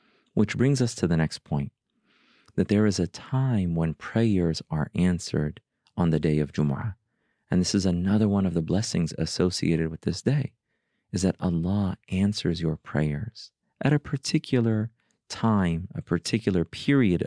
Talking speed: 160 wpm